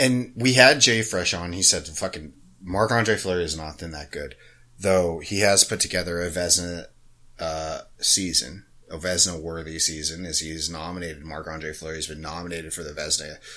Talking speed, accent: 185 wpm, American